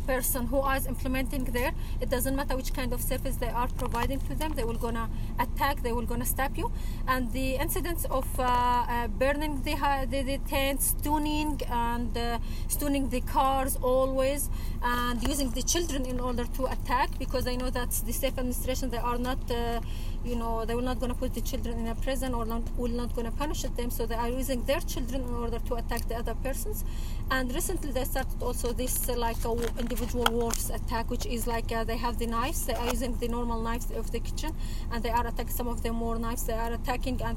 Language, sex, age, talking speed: English, female, 30-49, 225 wpm